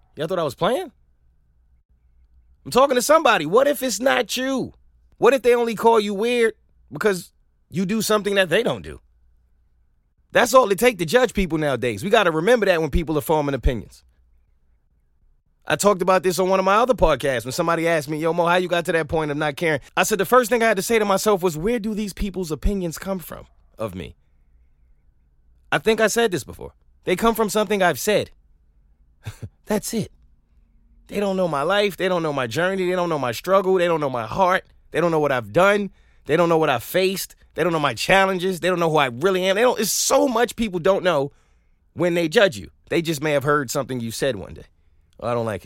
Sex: male